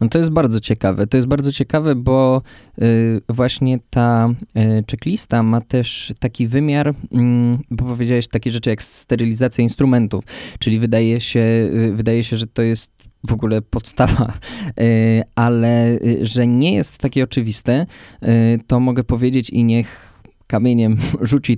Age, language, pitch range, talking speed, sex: 20-39, Polish, 115-140 Hz, 135 wpm, male